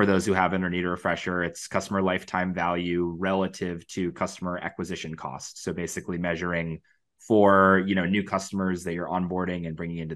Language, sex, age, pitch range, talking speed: English, male, 20-39, 85-100 Hz, 175 wpm